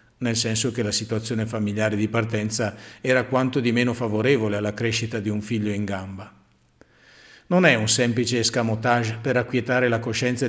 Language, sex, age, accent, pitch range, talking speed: Italian, male, 50-69, native, 110-145 Hz, 165 wpm